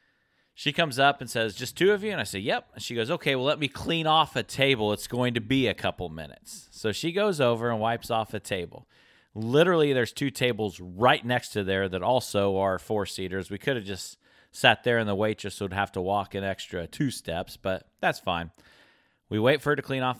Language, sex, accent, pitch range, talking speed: English, male, American, 95-125 Hz, 235 wpm